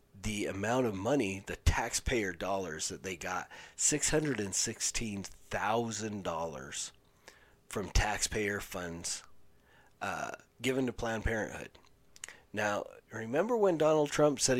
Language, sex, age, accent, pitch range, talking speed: English, male, 40-59, American, 100-125 Hz, 105 wpm